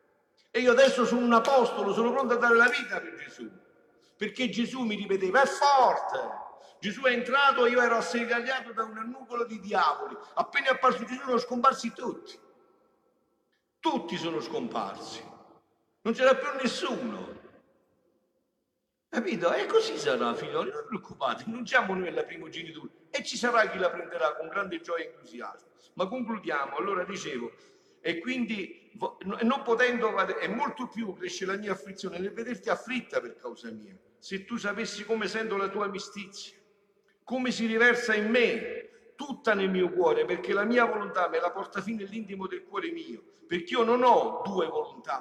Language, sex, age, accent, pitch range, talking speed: Italian, male, 50-69, native, 200-265 Hz, 165 wpm